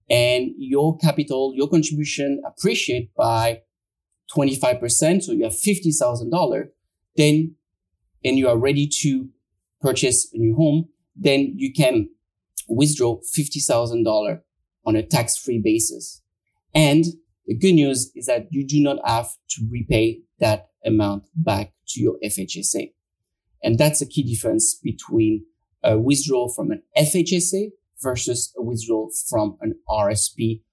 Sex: male